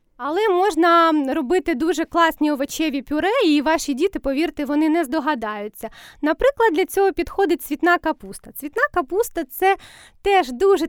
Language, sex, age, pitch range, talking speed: Ukrainian, female, 20-39, 285-360 Hz, 145 wpm